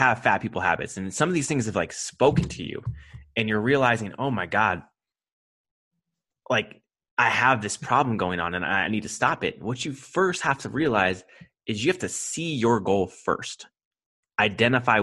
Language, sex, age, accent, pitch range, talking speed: English, male, 20-39, American, 100-140 Hz, 190 wpm